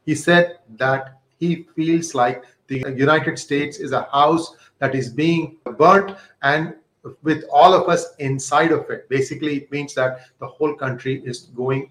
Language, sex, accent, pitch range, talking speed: English, male, Indian, 145-195 Hz, 165 wpm